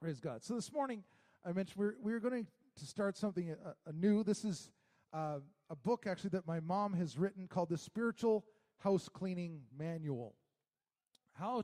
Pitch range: 175-230 Hz